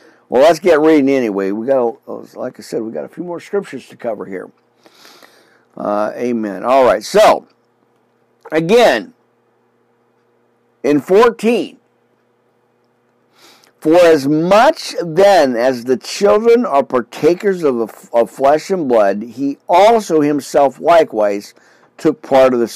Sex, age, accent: male, 50-69, American